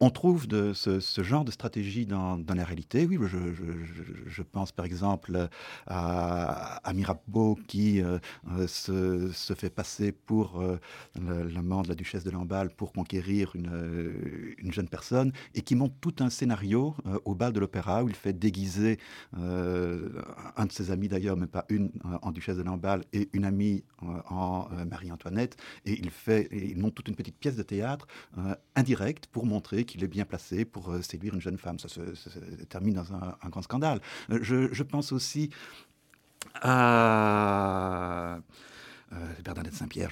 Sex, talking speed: male, 180 wpm